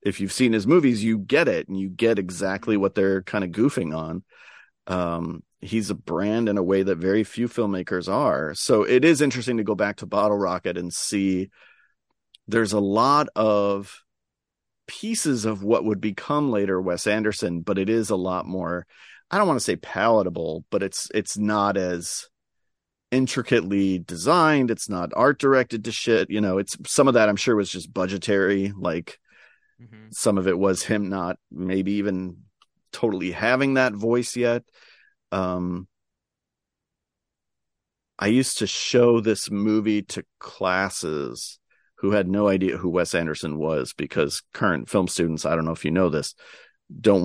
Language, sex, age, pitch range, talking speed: English, male, 40-59, 90-110 Hz, 170 wpm